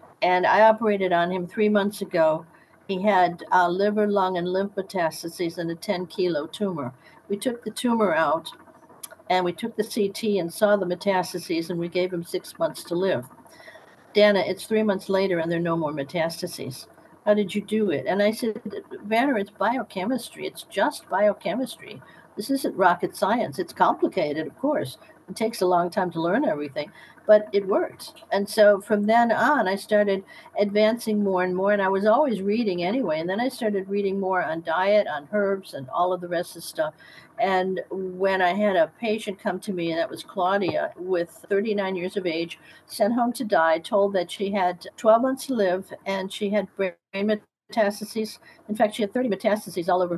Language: English